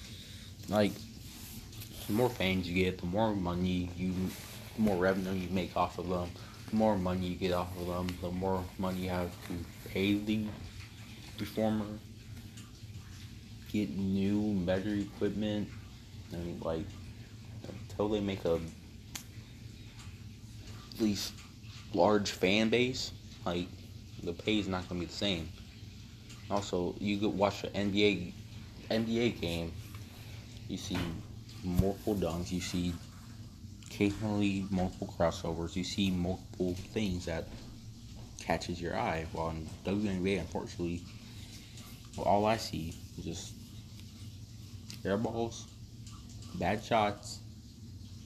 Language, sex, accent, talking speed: English, male, American, 120 wpm